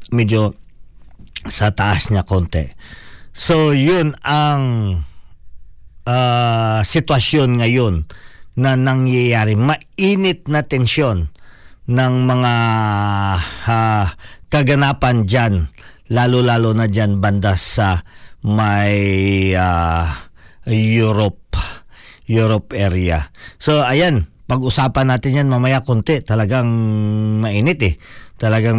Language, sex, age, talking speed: Filipino, male, 50-69, 90 wpm